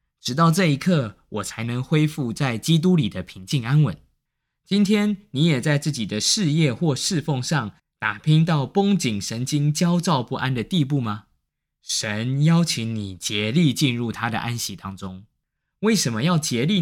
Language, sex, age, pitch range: Chinese, male, 20-39, 115-165 Hz